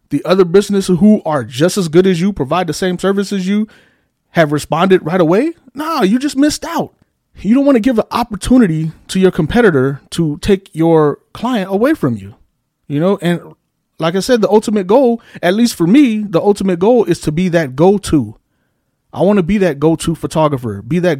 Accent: American